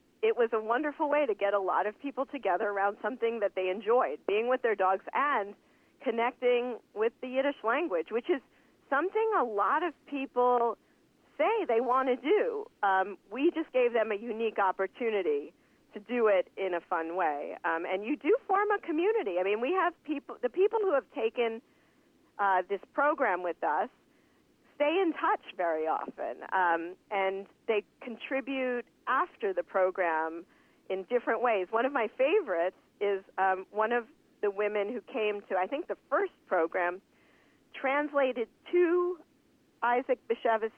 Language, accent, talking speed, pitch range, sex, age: English, American, 165 wpm, 205-295 Hz, female, 40-59